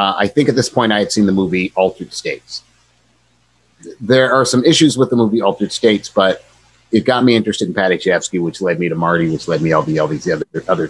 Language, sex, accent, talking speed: English, male, American, 230 wpm